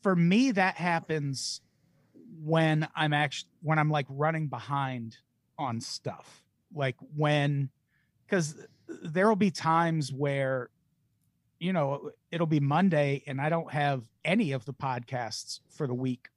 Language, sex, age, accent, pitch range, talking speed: English, male, 40-59, American, 130-160 Hz, 135 wpm